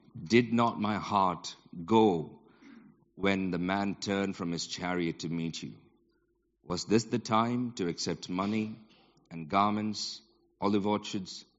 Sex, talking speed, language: male, 135 wpm, English